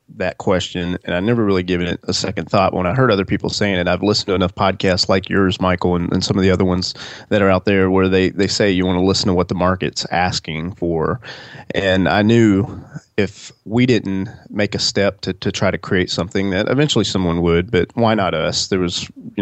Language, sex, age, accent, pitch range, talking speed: English, male, 30-49, American, 90-105 Hz, 240 wpm